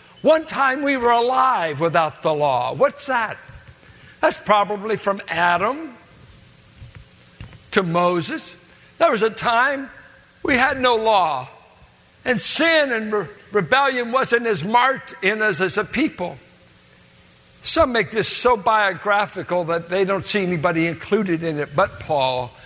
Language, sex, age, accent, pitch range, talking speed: English, male, 60-79, American, 180-245 Hz, 135 wpm